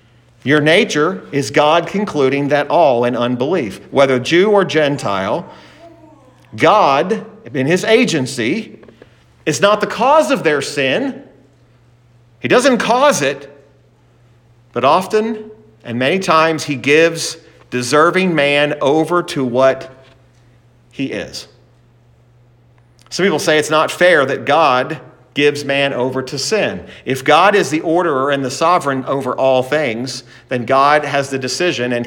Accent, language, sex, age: American, English, male, 40-59